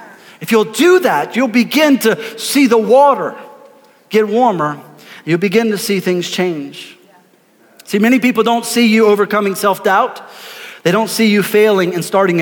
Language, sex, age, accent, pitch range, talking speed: English, male, 40-59, American, 155-190 Hz, 160 wpm